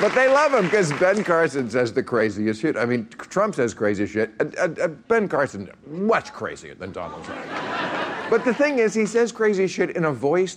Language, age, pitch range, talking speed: English, 50-69, 105-165 Hz, 215 wpm